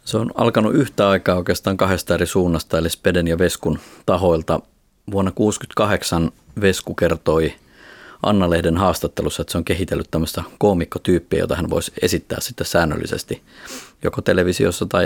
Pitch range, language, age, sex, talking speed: 80-95 Hz, Finnish, 30-49, male, 140 wpm